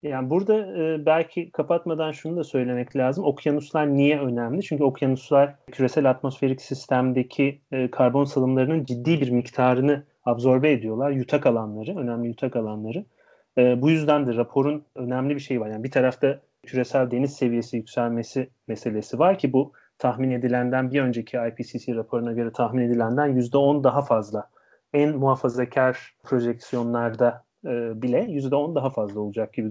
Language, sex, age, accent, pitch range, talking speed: Turkish, male, 30-49, native, 125-160 Hz, 135 wpm